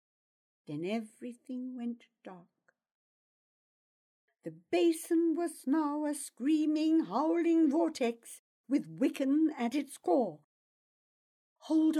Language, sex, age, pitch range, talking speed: English, female, 60-79, 215-310 Hz, 90 wpm